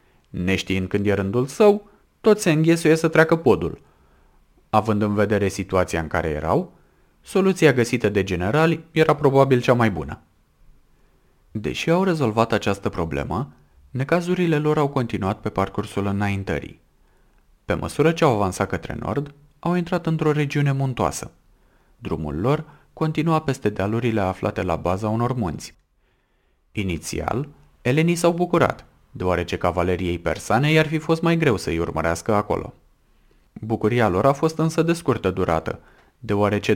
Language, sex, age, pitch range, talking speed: Romanian, male, 30-49, 90-150 Hz, 140 wpm